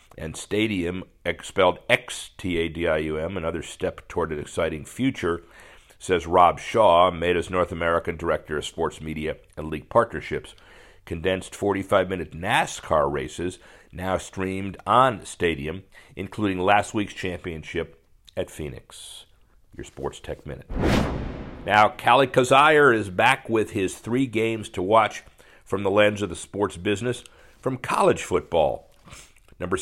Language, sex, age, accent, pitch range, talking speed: English, male, 50-69, American, 85-105 Hz, 130 wpm